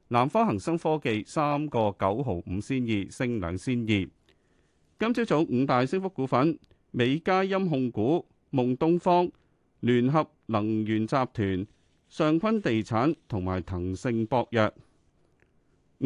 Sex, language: male, Chinese